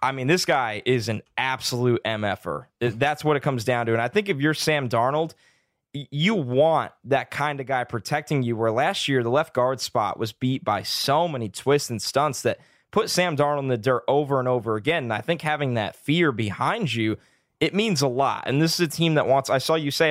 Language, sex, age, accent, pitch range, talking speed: English, male, 20-39, American, 120-145 Hz, 235 wpm